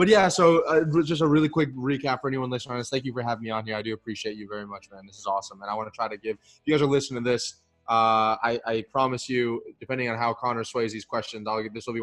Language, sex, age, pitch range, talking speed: English, male, 20-39, 110-125 Hz, 300 wpm